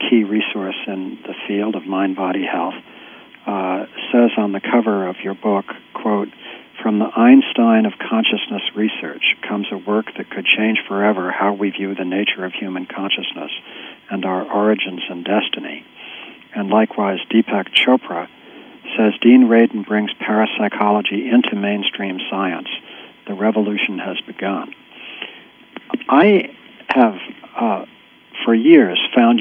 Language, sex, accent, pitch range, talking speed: English, male, American, 100-120 Hz, 135 wpm